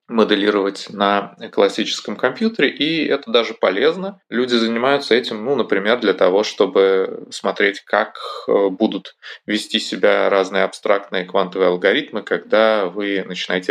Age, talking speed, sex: 20-39, 125 wpm, male